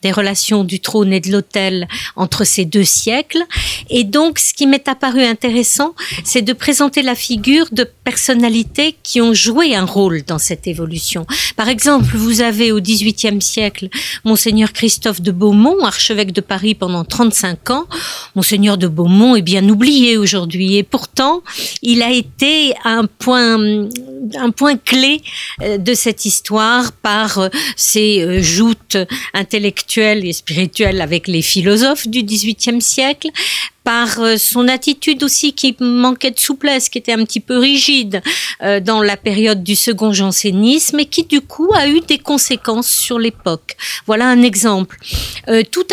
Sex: female